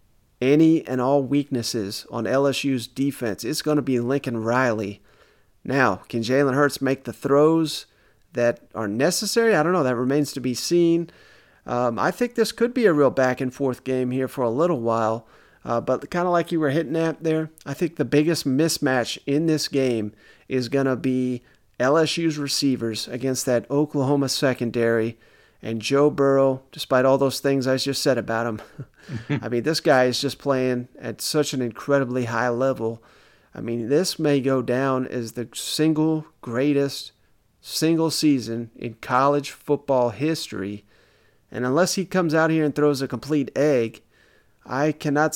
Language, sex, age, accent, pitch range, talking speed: English, male, 40-59, American, 120-155 Hz, 170 wpm